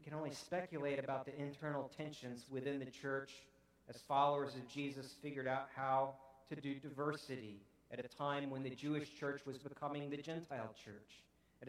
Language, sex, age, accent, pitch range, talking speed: English, male, 50-69, American, 135-165 Hz, 170 wpm